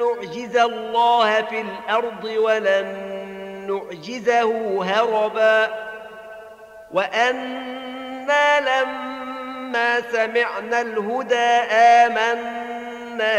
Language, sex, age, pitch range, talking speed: Arabic, male, 40-59, 195-240 Hz, 55 wpm